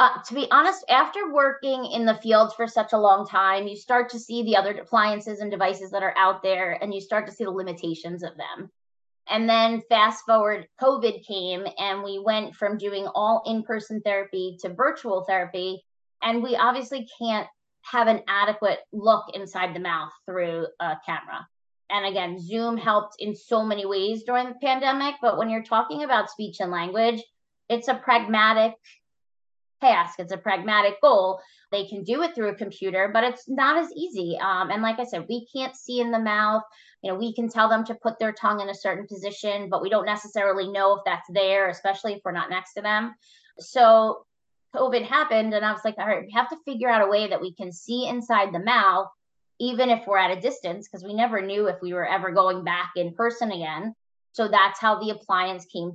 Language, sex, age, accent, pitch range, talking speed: English, female, 20-39, American, 190-230 Hz, 210 wpm